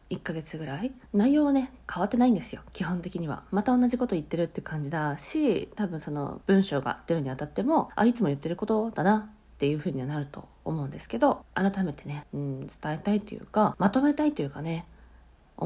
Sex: female